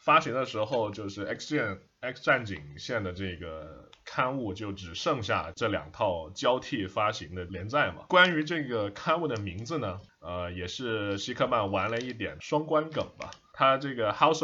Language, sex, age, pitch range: Chinese, male, 20-39, 95-115 Hz